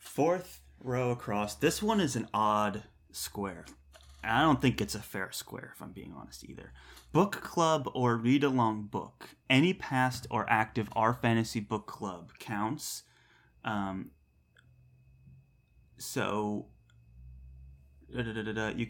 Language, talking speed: English, 120 wpm